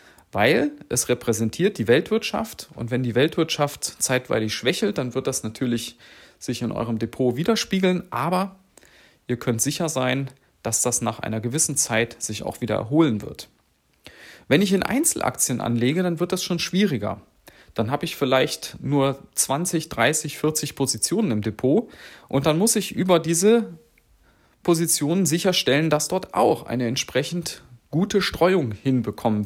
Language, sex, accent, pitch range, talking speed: German, male, German, 120-170 Hz, 150 wpm